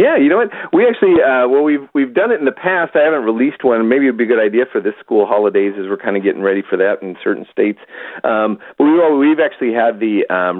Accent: American